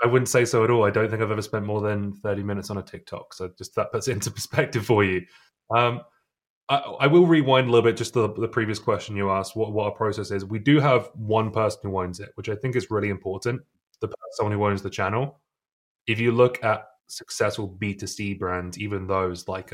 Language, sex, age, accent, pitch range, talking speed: English, male, 20-39, British, 95-115 Hz, 240 wpm